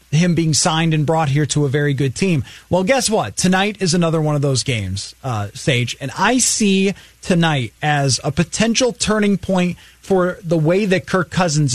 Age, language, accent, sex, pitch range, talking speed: 30-49, English, American, male, 150-205 Hz, 195 wpm